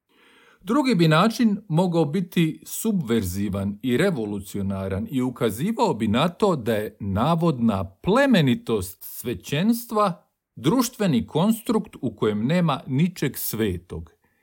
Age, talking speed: 50-69, 105 wpm